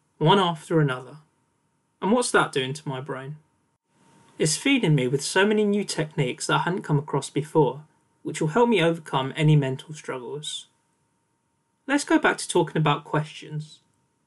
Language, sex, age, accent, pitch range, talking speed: English, male, 20-39, British, 145-190 Hz, 165 wpm